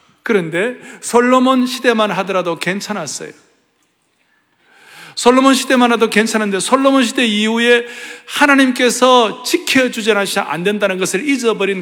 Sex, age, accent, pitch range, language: male, 40-59, native, 200-245 Hz, Korean